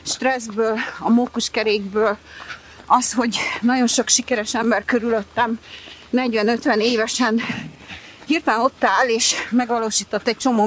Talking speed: 105 wpm